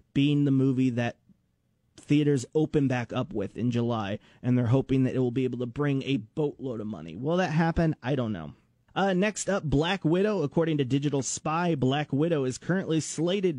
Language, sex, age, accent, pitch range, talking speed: English, male, 30-49, American, 125-165 Hz, 200 wpm